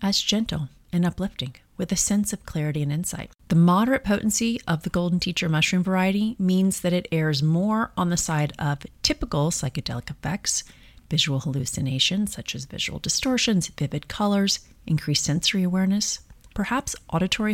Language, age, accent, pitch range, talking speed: English, 30-49, American, 155-205 Hz, 155 wpm